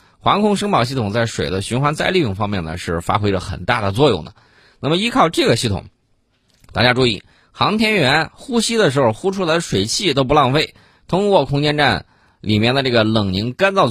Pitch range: 95-140 Hz